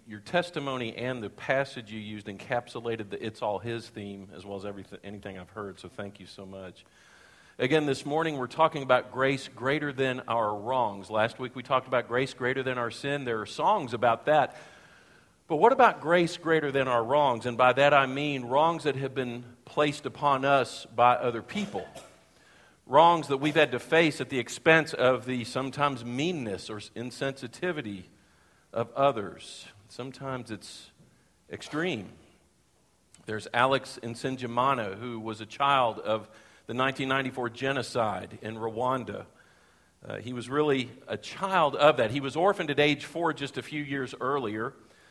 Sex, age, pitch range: male, 50-69, 115-145 Hz